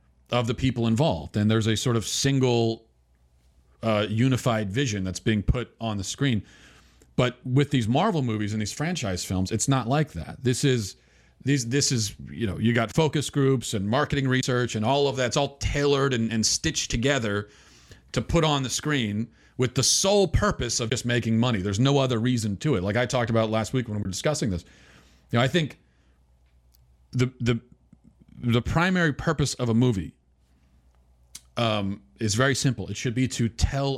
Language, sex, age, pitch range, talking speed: English, male, 40-59, 95-140 Hz, 190 wpm